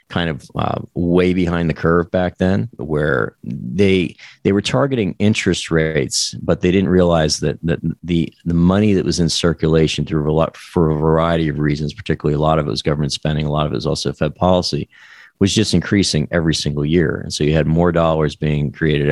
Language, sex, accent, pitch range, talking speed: English, male, American, 75-85 Hz, 210 wpm